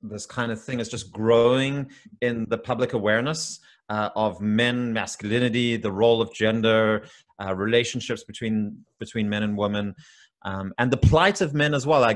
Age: 30-49